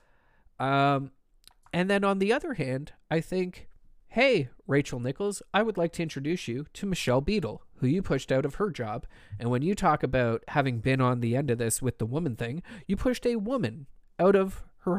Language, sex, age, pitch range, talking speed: English, male, 30-49, 120-165 Hz, 205 wpm